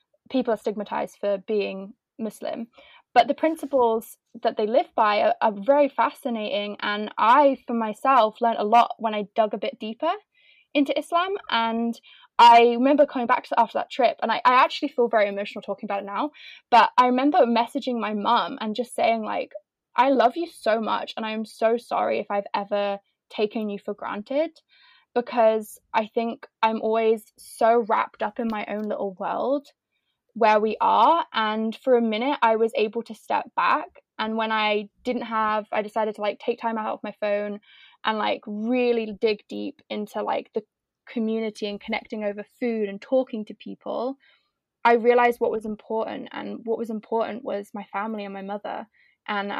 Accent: British